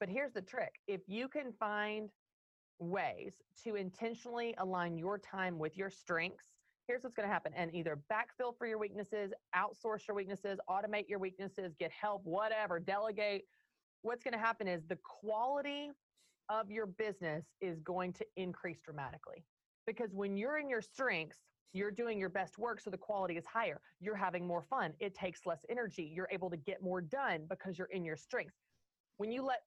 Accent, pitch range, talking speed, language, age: American, 175-215 Hz, 180 wpm, English, 30-49